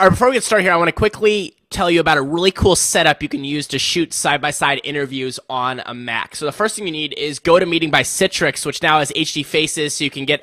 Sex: male